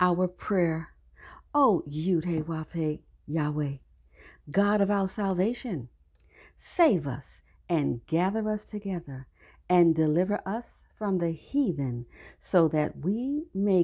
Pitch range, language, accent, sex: 150-225 Hz, English, American, female